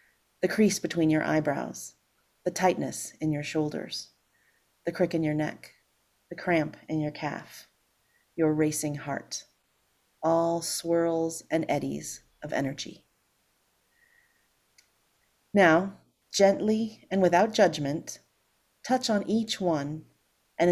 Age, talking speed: 30-49, 115 wpm